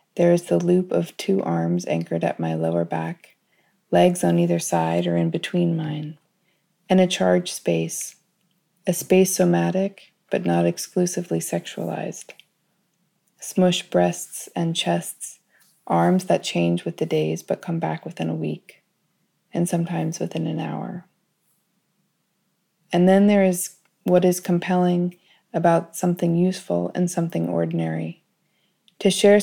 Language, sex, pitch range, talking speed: Portuguese, female, 160-185 Hz, 135 wpm